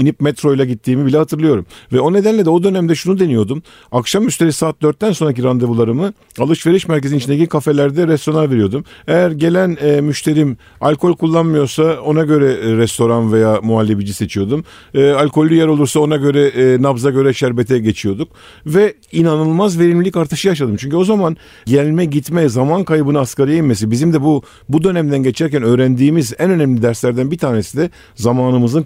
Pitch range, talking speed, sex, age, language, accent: 120-160 Hz, 150 wpm, male, 50-69, Turkish, native